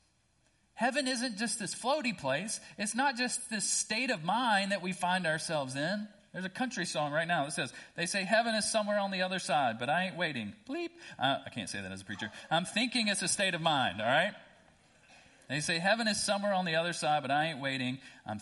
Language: English